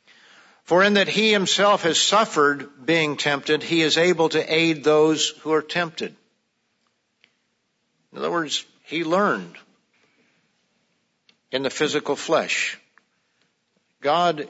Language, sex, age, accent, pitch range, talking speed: English, male, 50-69, American, 145-180 Hz, 115 wpm